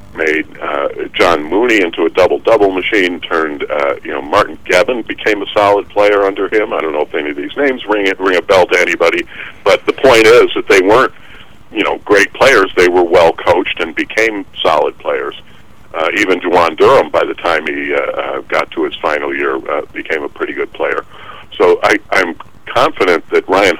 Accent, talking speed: American, 200 wpm